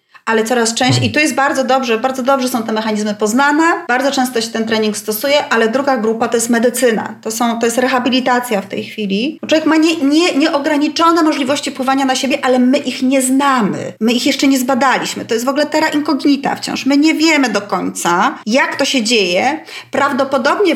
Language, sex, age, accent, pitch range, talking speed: Polish, female, 30-49, native, 230-285 Hz, 200 wpm